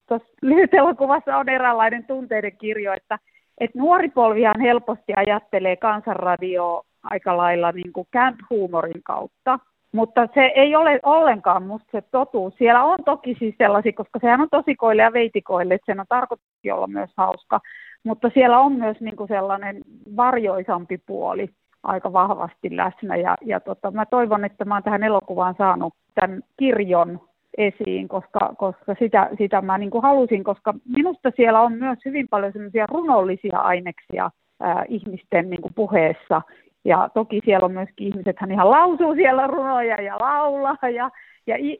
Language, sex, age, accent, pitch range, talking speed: Finnish, female, 30-49, native, 195-255 Hz, 155 wpm